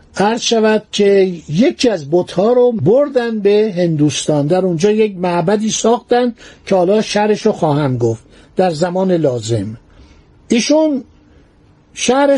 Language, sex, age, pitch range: Persian, male, 60-79, 180-235 Hz